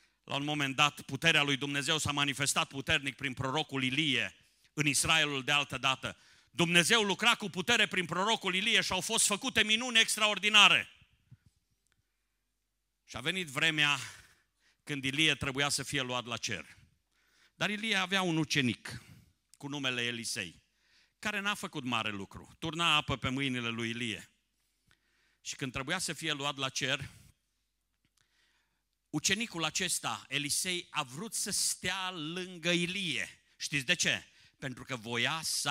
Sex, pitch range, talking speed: male, 130-190 Hz, 145 wpm